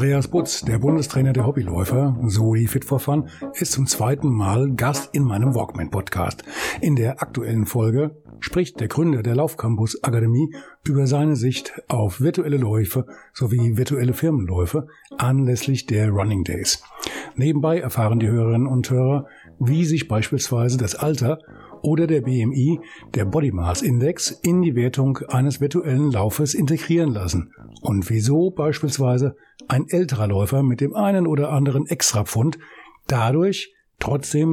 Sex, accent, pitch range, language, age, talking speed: male, German, 115-150 Hz, German, 60-79, 130 wpm